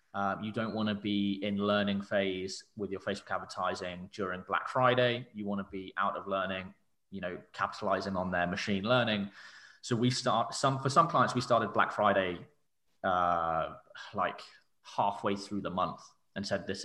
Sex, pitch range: male, 100-125 Hz